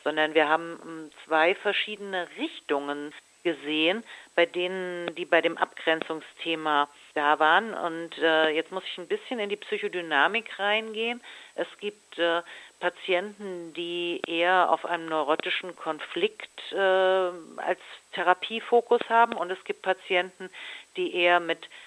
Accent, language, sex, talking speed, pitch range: German, German, female, 120 wpm, 155-205 Hz